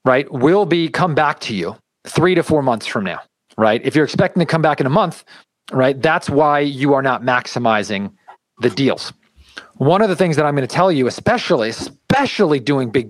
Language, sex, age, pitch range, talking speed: English, male, 40-59, 125-170 Hz, 210 wpm